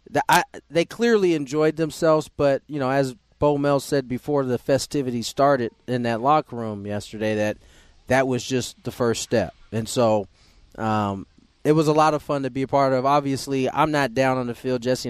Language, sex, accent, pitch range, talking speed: English, male, American, 110-145 Hz, 205 wpm